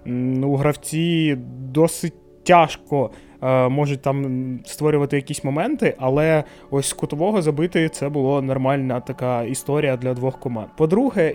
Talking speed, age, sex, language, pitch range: 115 wpm, 20-39, male, Ukrainian, 130-175 Hz